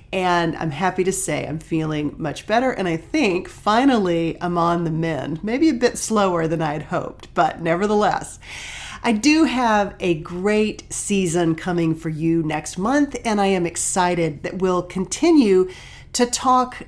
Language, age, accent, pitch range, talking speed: English, 40-59, American, 165-230 Hz, 165 wpm